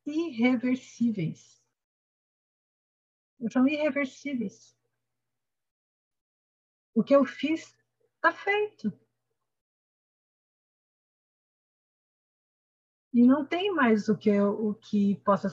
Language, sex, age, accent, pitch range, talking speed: Portuguese, female, 50-69, Brazilian, 200-265 Hz, 75 wpm